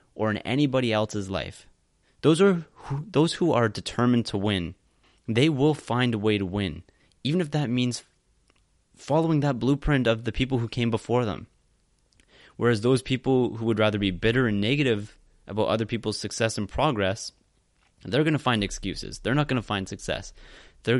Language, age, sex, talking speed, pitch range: English, 20-39, male, 180 wpm, 100-130 Hz